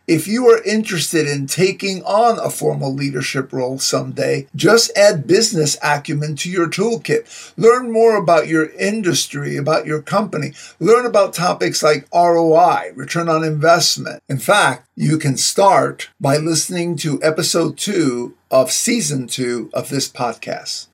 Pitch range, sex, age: 140-180 Hz, male, 50-69